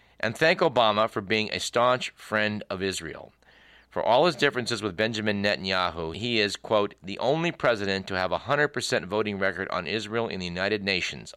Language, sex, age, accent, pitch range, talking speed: English, male, 50-69, American, 95-110 Hz, 185 wpm